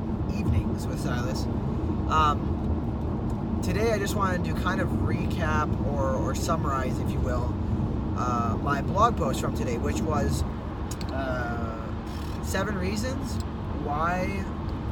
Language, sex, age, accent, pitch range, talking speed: English, male, 20-39, American, 80-105 Hz, 120 wpm